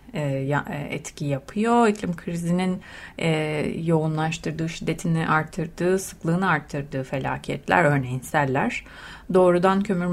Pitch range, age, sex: 150-185 Hz, 30-49, female